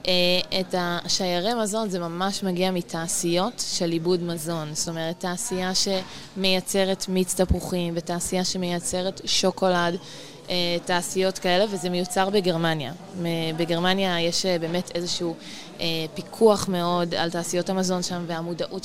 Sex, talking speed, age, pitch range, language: female, 110 wpm, 20-39, 170-190 Hz, Hebrew